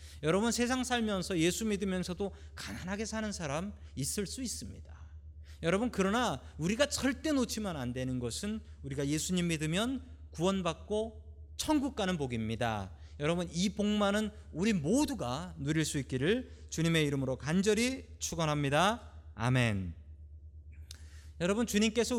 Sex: male